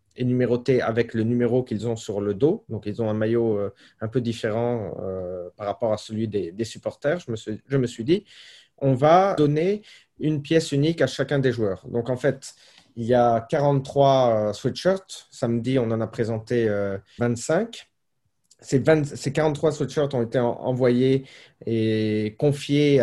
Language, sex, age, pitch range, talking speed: French, male, 30-49, 115-150 Hz, 160 wpm